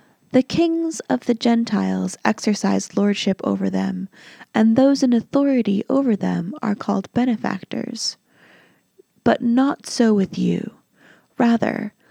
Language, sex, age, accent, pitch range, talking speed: English, female, 20-39, American, 205-250 Hz, 120 wpm